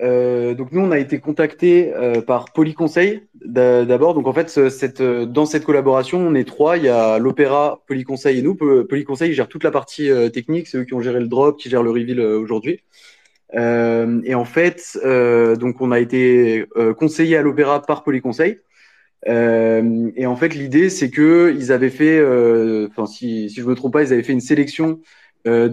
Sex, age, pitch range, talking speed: male, 20-39, 115-145 Hz, 180 wpm